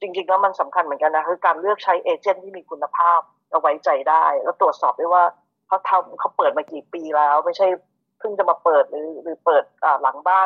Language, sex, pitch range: Thai, female, 170-220 Hz